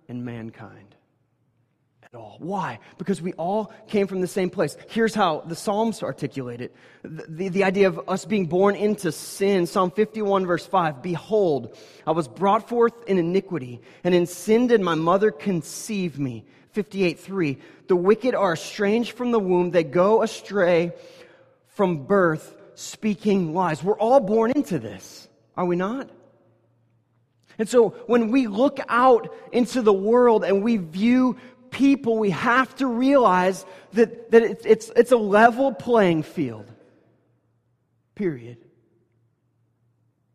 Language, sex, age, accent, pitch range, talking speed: English, male, 30-49, American, 125-210 Hz, 145 wpm